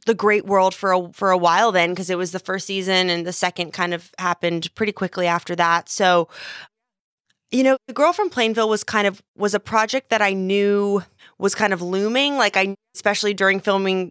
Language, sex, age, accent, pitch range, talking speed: English, female, 20-39, American, 175-205 Hz, 210 wpm